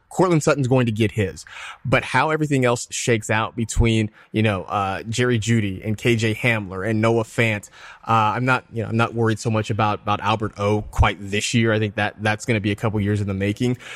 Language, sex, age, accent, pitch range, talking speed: English, male, 20-39, American, 105-130 Hz, 230 wpm